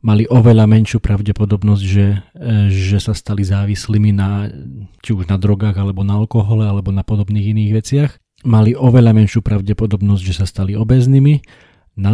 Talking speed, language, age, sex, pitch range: 155 wpm, Slovak, 40-59, male, 95-115 Hz